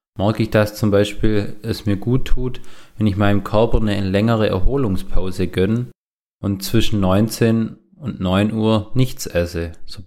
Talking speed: 160 wpm